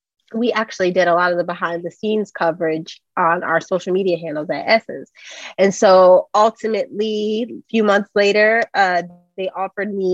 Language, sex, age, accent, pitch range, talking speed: English, female, 20-39, American, 175-210 Hz, 170 wpm